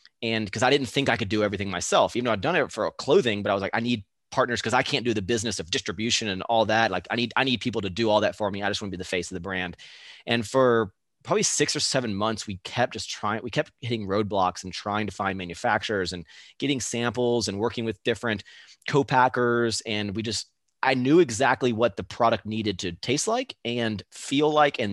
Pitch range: 105-125 Hz